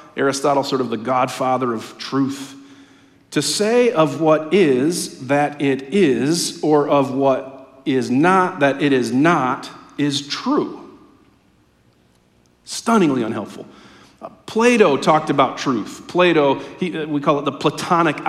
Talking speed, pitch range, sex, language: 125 wpm, 135-200 Hz, male, English